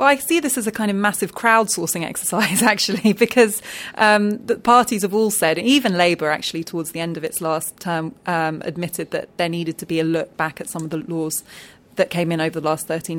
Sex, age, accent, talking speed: female, 20-39, British, 230 wpm